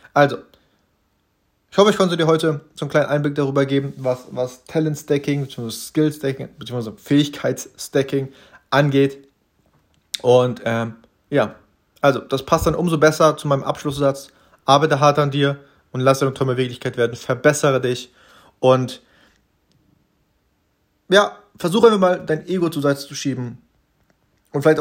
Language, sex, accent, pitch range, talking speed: German, male, German, 120-150 Hz, 140 wpm